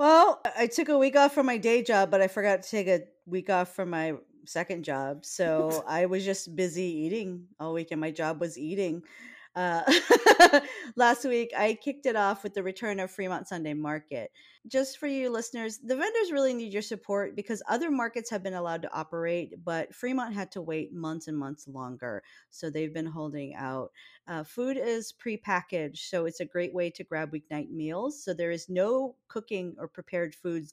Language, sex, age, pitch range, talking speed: English, female, 40-59, 160-220 Hz, 200 wpm